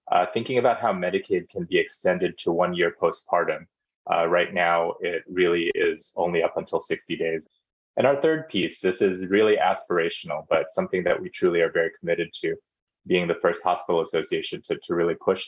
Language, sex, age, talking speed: English, male, 20-39, 190 wpm